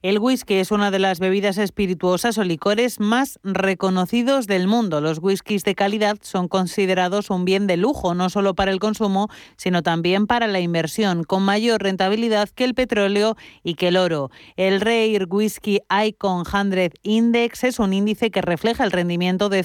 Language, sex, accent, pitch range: Spanish, female, Spanish, 185-215 Hz